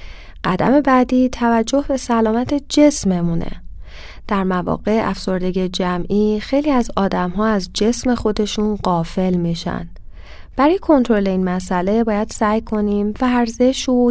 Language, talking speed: Persian, 125 wpm